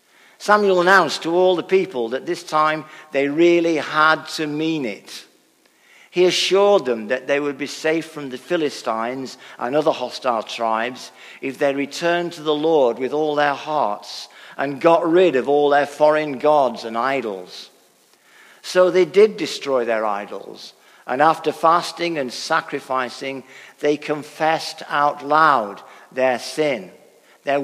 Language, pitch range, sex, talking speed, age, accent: English, 130-175 Hz, male, 150 wpm, 50-69, British